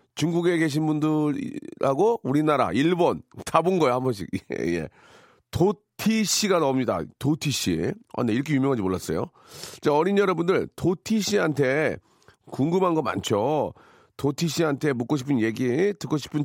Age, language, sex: 40-59, Korean, male